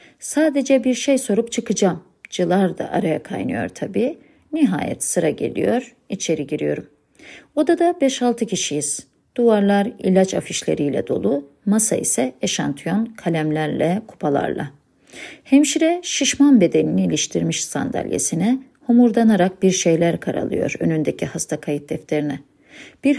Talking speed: 105 wpm